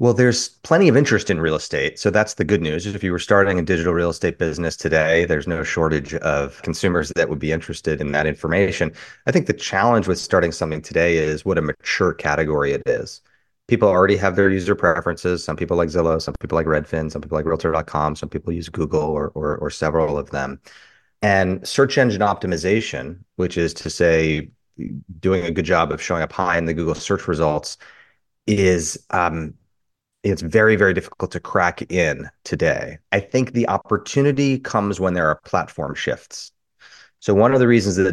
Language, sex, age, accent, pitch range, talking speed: English, male, 30-49, American, 80-100 Hz, 200 wpm